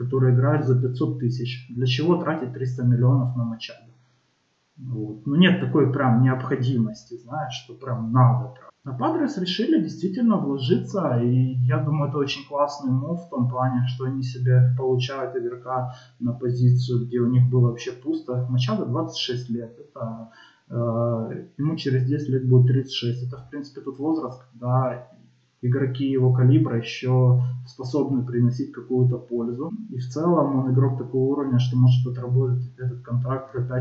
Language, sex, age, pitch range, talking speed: Russian, male, 20-39, 125-140 Hz, 155 wpm